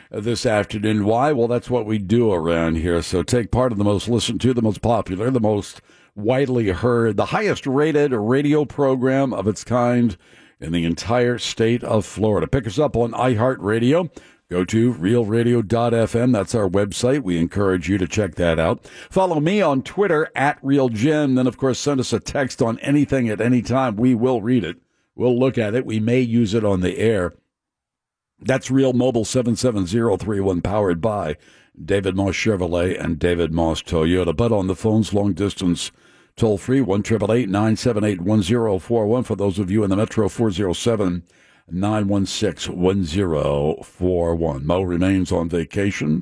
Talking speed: 165 wpm